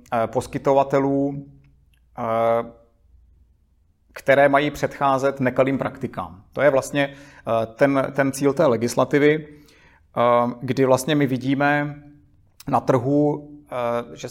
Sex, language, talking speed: male, Czech, 90 wpm